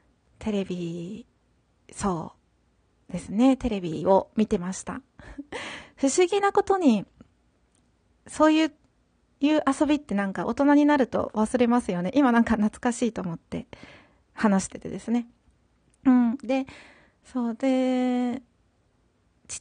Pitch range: 205-285 Hz